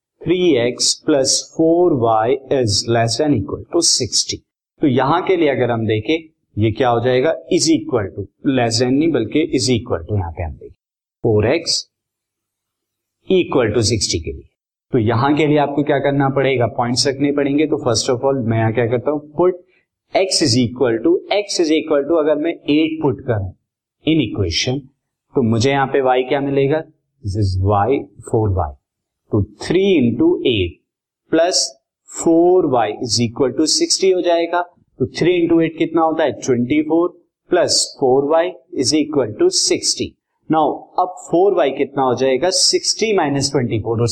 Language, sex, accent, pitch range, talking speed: Hindi, male, native, 120-170 Hz, 155 wpm